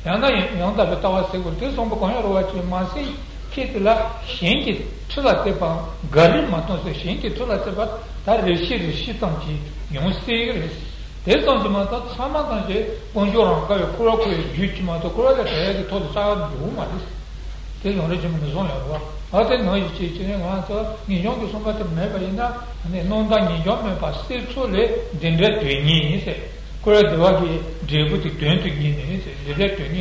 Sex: male